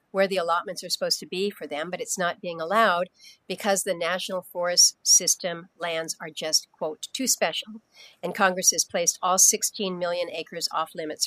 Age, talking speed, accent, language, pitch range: 50-69, 185 wpm, American, English, 170-205 Hz